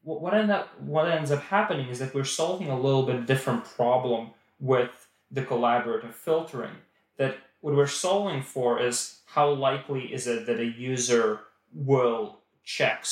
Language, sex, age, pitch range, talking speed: English, male, 20-39, 115-140 Hz, 165 wpm